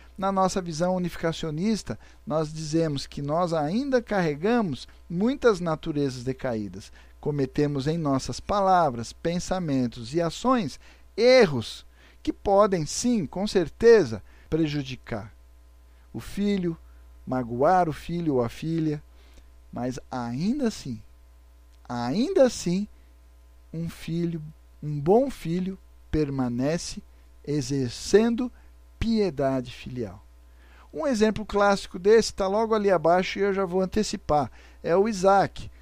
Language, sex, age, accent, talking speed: Portuguese, male, 50-69, Brazilian, 110 wpm